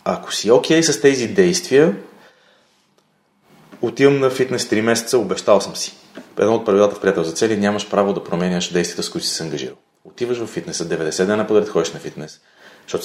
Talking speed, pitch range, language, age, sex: 195 wpm, 95-120 Hz, Bulgarian, 30-49, male